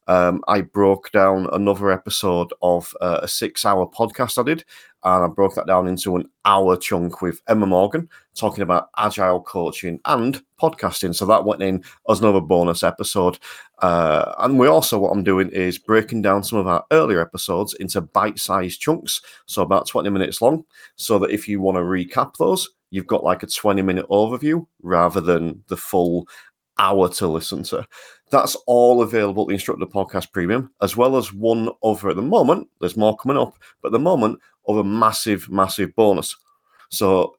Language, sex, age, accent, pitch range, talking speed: English, male, 40-59, British, 90-110 Hz, 185 wpm